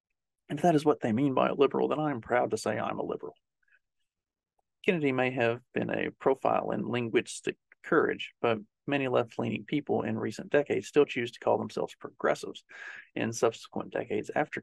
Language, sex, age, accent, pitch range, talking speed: English, male, 40-59, American, 115-165 Hz, 185 wpm